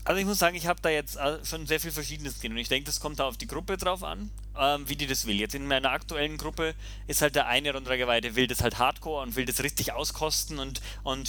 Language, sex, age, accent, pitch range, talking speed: German, male, 30-49, German, 120-155 Hz, 270 wpm